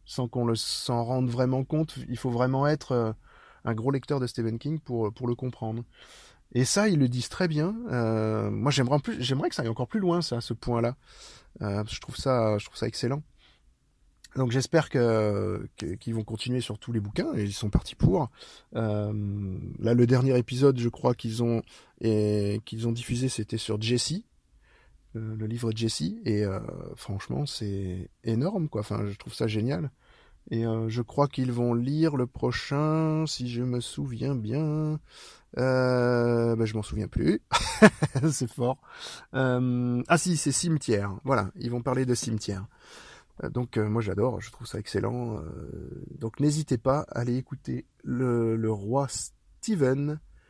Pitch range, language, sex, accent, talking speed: 110-135 Hz, French, male, French, 180 wpm